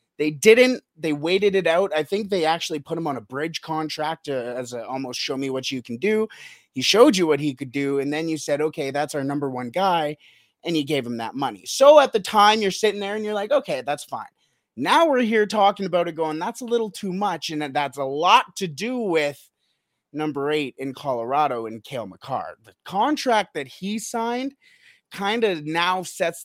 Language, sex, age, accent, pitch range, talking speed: English, male, 30-49, American, 150-210 Hz, 215 wpm